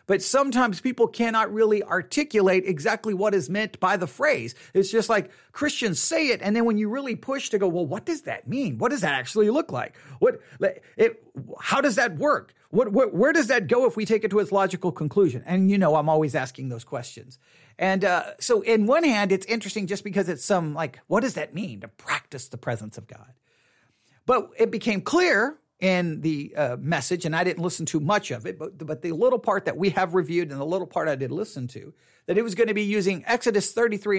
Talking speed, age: 230 wpm, 40-59